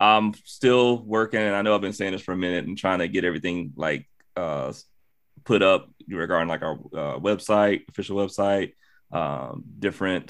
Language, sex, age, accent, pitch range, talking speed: English, male, 20-39, American, 95-105 Hz, 180 wpm